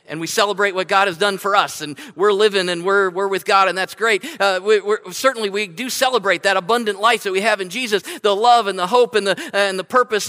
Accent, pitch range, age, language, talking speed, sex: American, 155-205 Hz, 40-59, English, 260 wpm, male